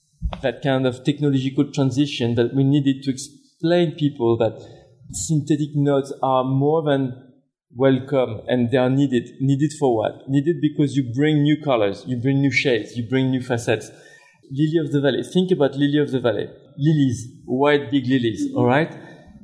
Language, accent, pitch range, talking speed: English, French, 130-150 Hz, 170 wpm